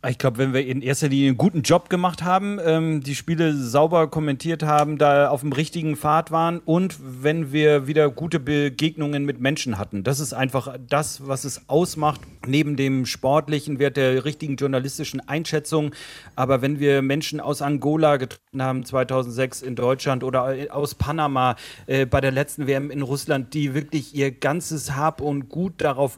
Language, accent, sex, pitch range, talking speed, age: German, German, male, 140-155 Hz, 175 wpm, 40-59